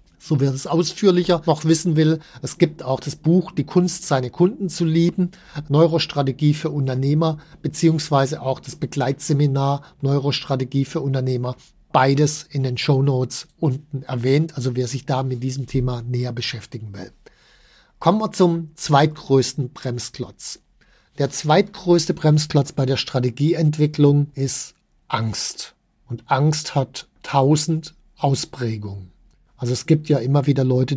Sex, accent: male, German